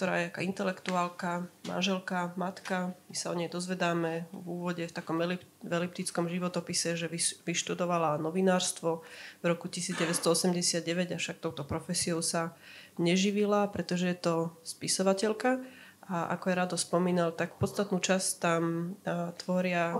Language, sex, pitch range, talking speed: Slovak, female, 170-190 Hz, 125 wpm